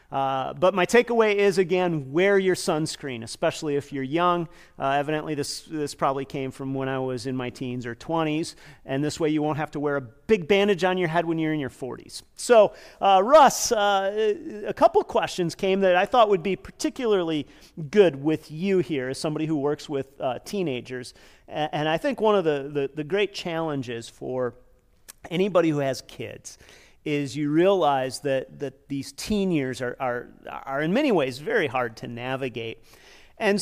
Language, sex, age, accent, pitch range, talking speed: English, male, 40-59, American, 135-180 Hz, 190 wpm